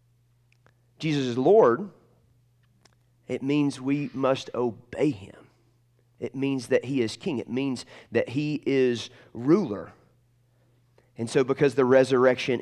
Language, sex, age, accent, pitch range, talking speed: English, male, 30-49, American, 115-135 Hz, 125 wpm